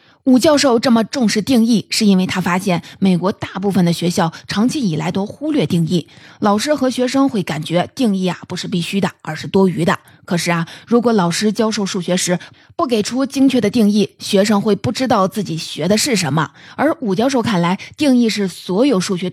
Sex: female